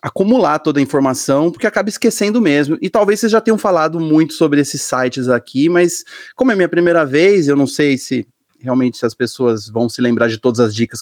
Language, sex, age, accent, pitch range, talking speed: Portuguese, male, 30-49, Brazilian, 130-175 Hz, 225 wpm